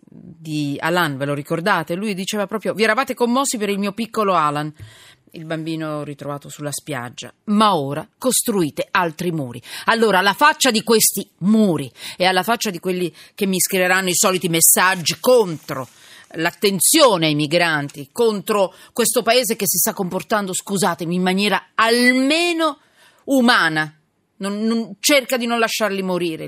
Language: Italian